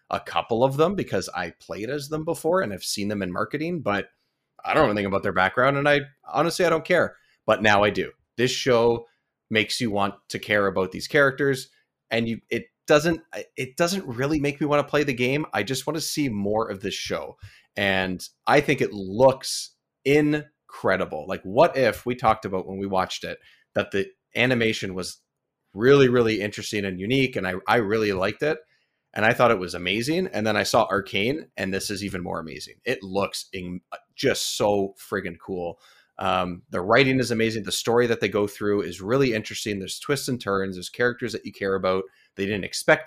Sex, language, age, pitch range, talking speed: male, English, 30-49, 100-135 Hz, 205 wpm